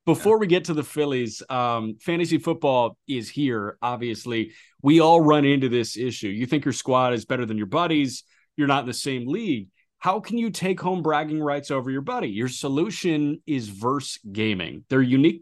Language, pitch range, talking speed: English, 115-150 Hz, 195 wpm